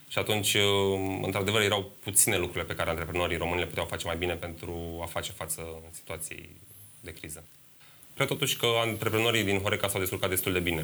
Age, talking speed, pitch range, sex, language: 20-39, 185 wpm, 80-100 Hz, male, Romanian